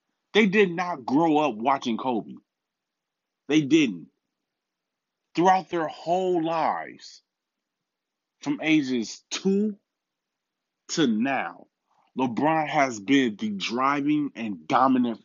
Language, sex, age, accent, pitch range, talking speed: English, male, 20-39, American, 115-175 Hz, 100 wpm